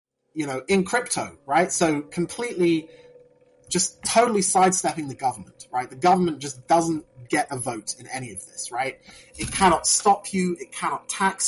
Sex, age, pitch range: male, 30-49, 130-175 Hz